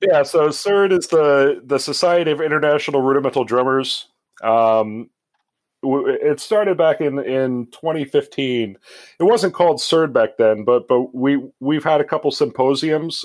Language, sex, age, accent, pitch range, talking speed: English, male, 30-49, American, 115-145 Hz, 150 wpm